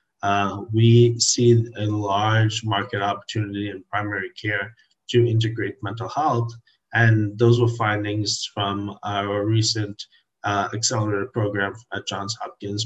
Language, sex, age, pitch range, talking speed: English, male, 30-49, 105-115 Hz, 125 wpm